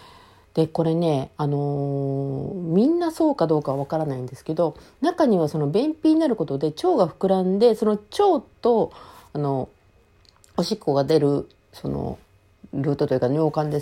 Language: Japanese